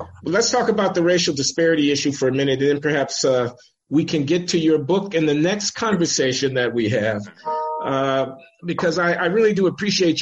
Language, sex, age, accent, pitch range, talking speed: English, male, 50-69, American, 125-160 Hz, 205 wpm